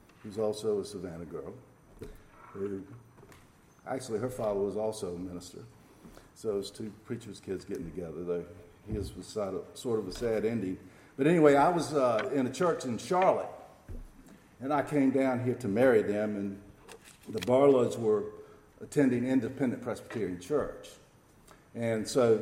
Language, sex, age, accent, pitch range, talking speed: English, male, 50-69, American, 105-135 Hz, 150 wpm